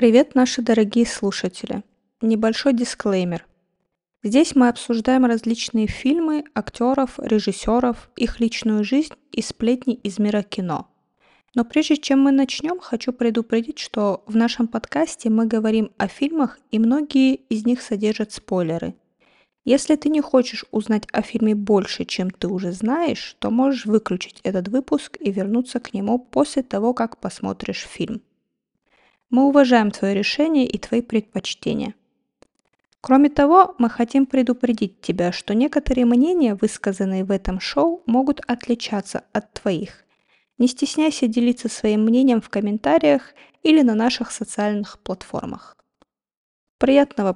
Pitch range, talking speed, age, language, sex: 215-270 Hz, 135 wpm, 20-39, Russian, female